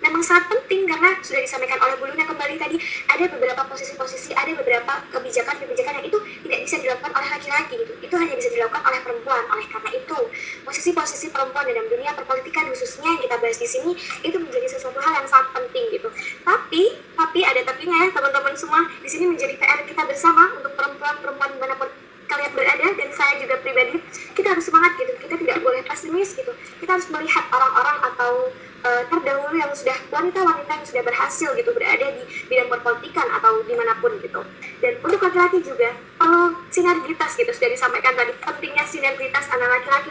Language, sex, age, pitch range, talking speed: Indonesian, male, 20-39, 270-450 Hz, 180 wpm